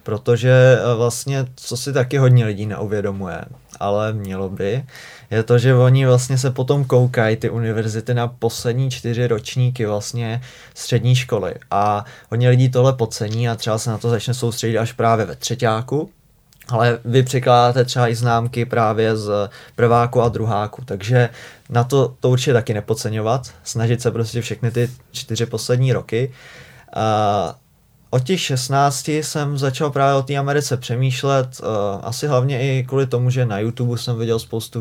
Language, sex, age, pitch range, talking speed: Czech, male, 20-39, 110-130 Hz, 160 wpm